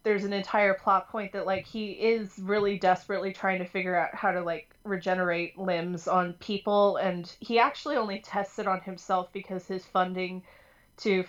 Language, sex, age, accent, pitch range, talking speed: English, female, 30-49, American, 190-240 Hz, 180 wpm